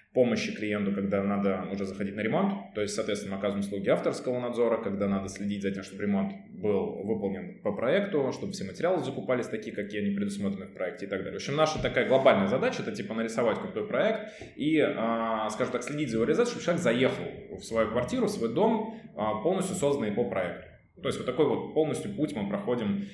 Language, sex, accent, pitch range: Russian, male, native, 105-160 Hz